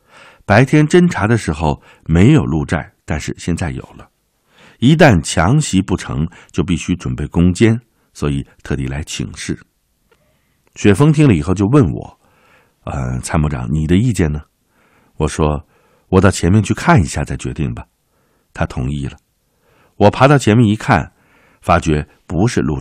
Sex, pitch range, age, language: male, 75-115 Hz, 60-79, Chinese